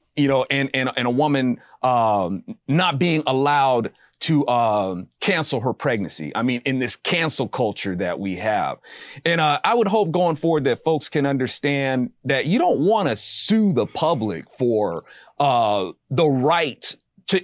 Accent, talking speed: American, 165 wpm